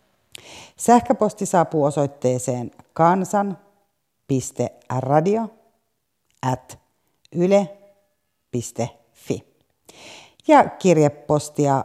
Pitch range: 130-180 Hz